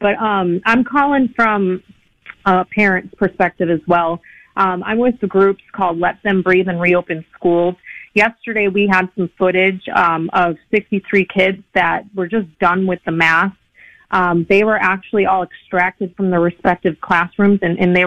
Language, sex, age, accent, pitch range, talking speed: English, female, 30-49, American, 175-200 Hz, 170 wpm